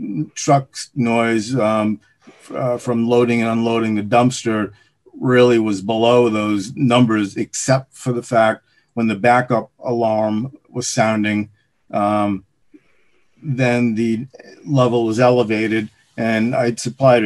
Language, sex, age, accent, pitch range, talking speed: English, male, 50-69, American, 110-125 Hz, 120 wpm